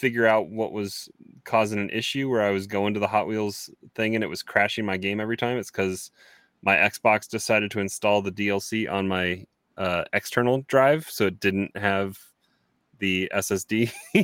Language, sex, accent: English, male, American